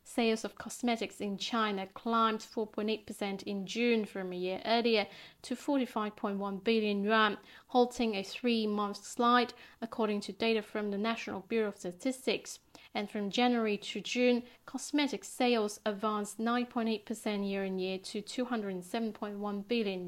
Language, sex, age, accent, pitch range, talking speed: English, female, 40-59, British, 205-235 Hz, 130 wpm